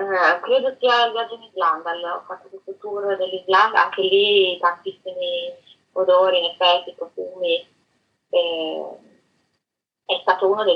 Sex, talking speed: female, 135 wpm